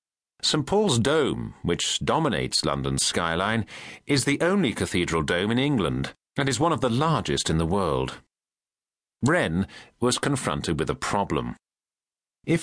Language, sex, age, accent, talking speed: English, male, 40-59, British, 145 wpm